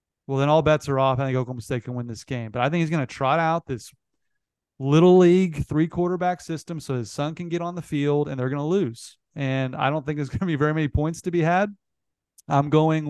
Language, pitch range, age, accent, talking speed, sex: English, 135-170 Hz, 30-49, American, 255 wpm, male